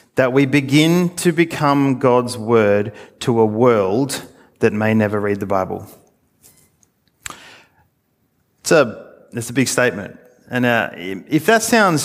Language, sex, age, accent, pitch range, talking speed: English, male, 30-49, Australian, 120-155 Hz, 135 wpm